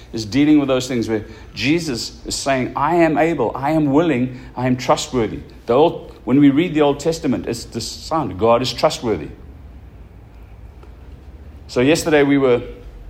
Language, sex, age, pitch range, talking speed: English, male, 60-79, 105-150 Hz, 165 wpm